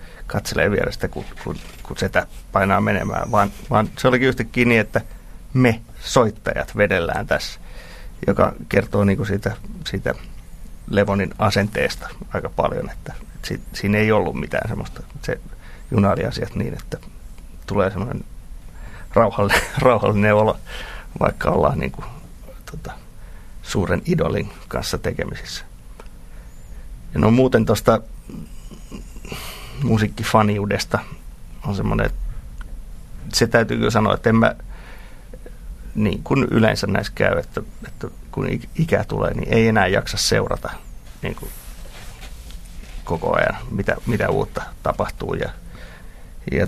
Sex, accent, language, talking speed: male, native, Finnish, 120 wpm